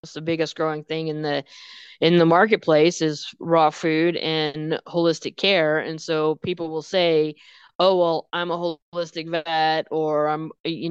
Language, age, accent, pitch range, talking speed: English, 20-39, American, 150-170 Hz, 160 wpm